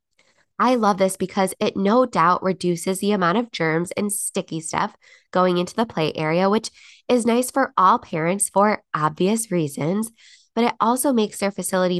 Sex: female